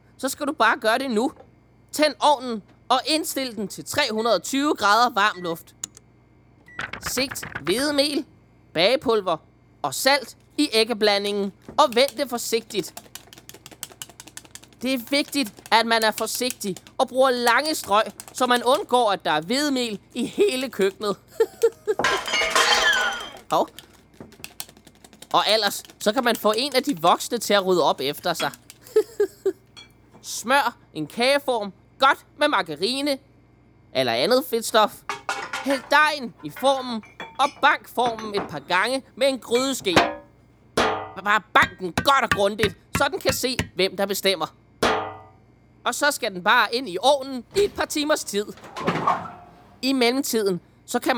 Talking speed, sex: 135 wpm, male